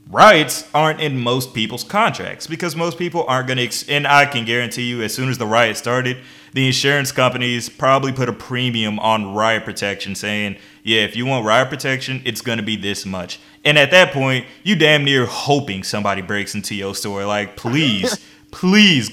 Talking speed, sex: 195 wpm, male